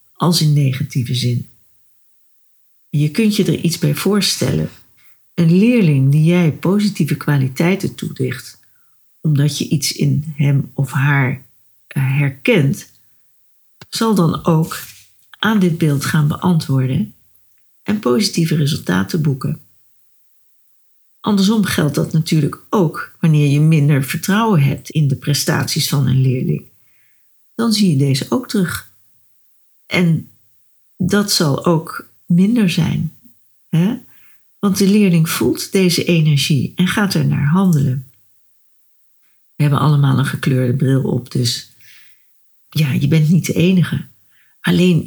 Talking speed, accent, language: 120 wpm, Dutch, Dutch